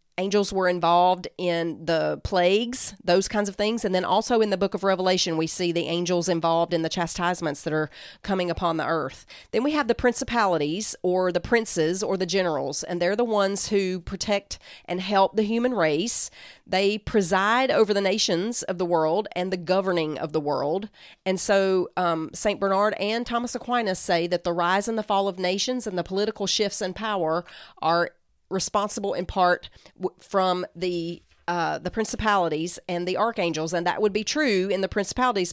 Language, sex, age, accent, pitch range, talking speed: English, female, 40-59, American, 175-210 Hz, 185 wpm